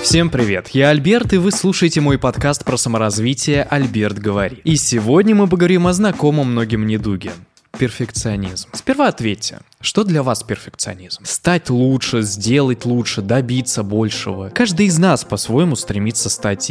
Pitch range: 105-155 Hz